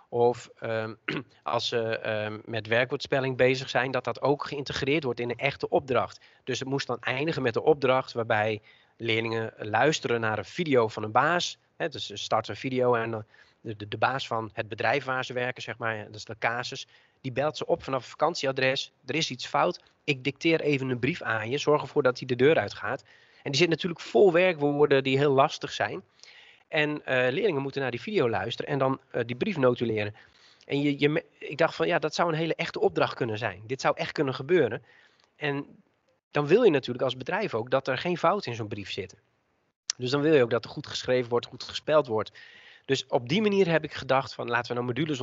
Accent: Dutch